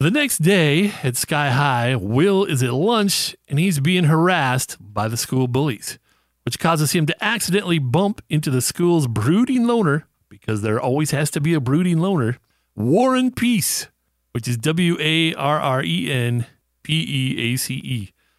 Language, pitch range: English, 125-185 Hz